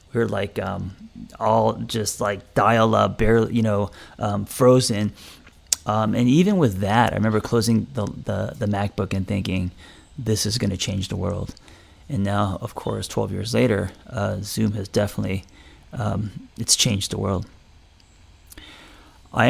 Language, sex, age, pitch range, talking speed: English, male, 30-49, 95-115 Hz, 160 wpm